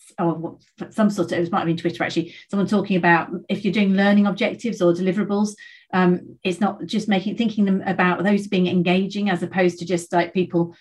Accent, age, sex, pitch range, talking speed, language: British, 40-59, female, 175-200 Hz, 205 wpm, English